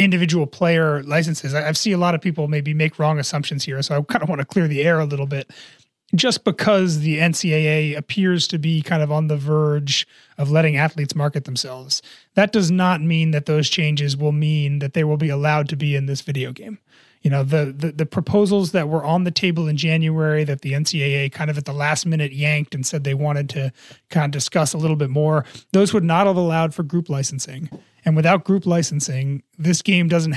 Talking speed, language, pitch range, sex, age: 225 wpm, English, 150-175 Hz, male, 30-49